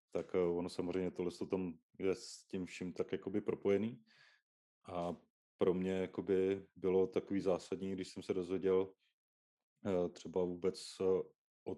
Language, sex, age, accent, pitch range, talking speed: Czech, male, 30-49, native, 85-95 Hz, 130 wpm